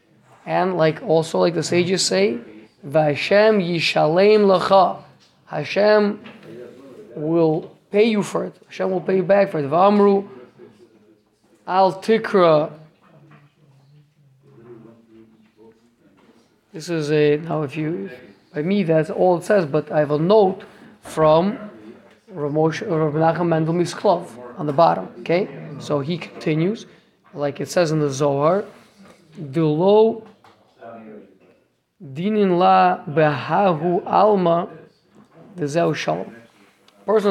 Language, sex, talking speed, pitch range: English, male, 110 wpm, 155-205 Hz